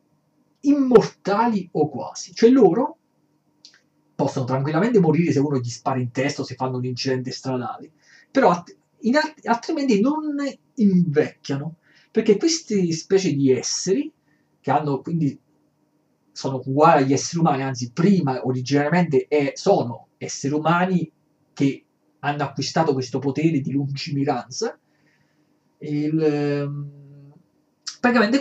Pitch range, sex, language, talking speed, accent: 135-190 Hz, male, Italian, 120 wpm, native